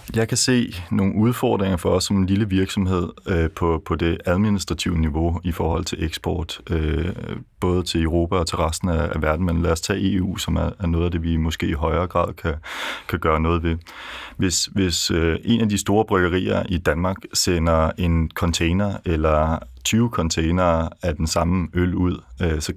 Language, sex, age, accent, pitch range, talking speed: Danish, male, 30-49, native, 80-95 Hz, 185 wpm